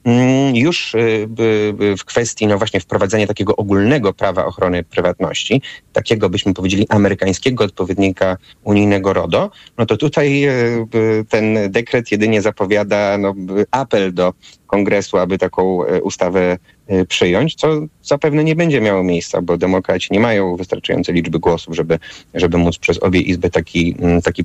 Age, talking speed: 30-49, 135 wpm